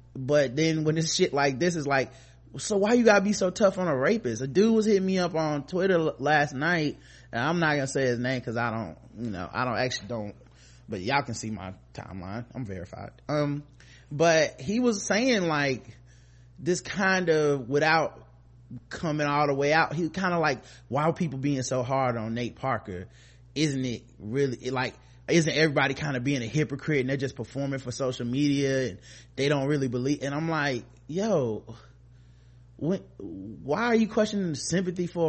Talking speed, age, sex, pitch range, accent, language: 205 wpm, 20-39, male, 120-165 Hz, American, English